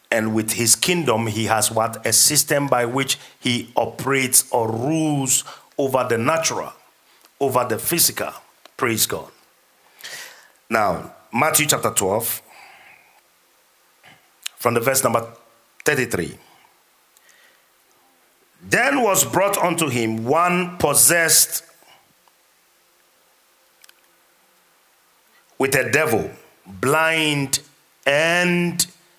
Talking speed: 90 wpm